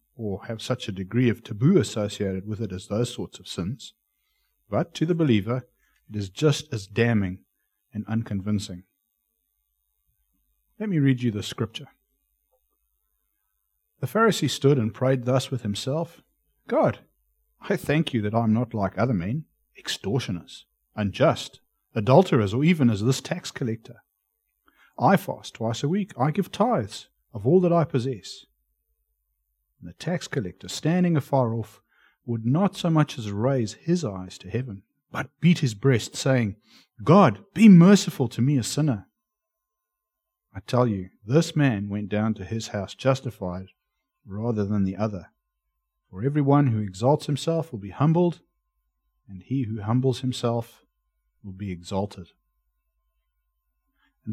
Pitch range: 100-155 Hz